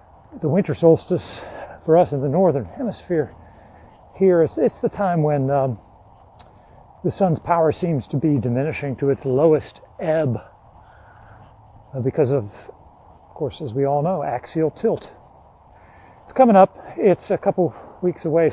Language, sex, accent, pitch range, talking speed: English, male, American, 130-170 Hz, 145 wpm